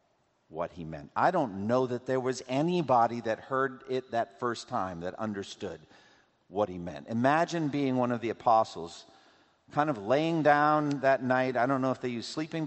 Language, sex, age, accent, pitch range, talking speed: English, male, 50-69, American, 100-140 Hz, 190 wpm